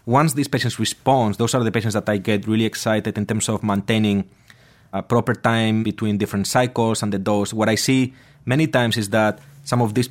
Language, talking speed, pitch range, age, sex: English, 215 wpm, 110-130 Hz, 30-49, male